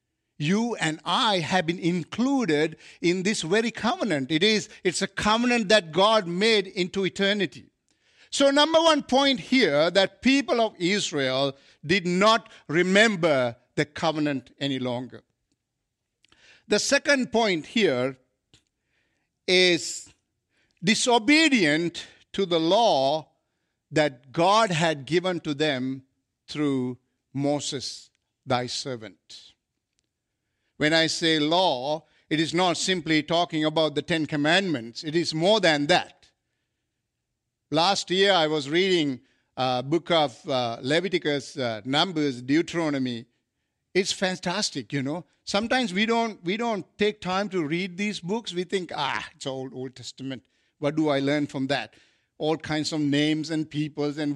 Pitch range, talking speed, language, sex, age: 140-195 Hz, 130 wpm, English, male, 50-69